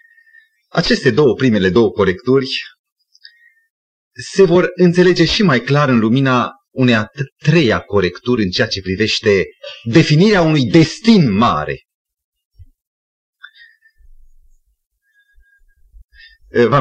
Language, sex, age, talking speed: Romanian, male, 30-49, 95 wpm